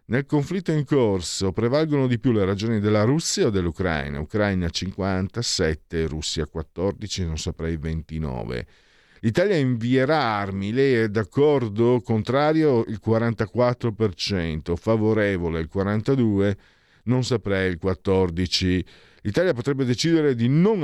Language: Italian